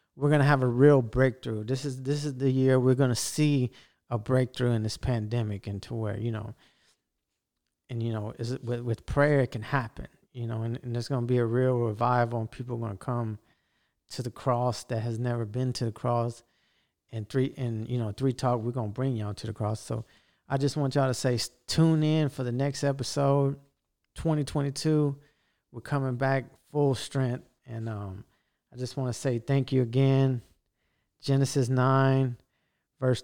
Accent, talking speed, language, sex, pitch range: American, 200 wpm, English, male, 115-135 Hz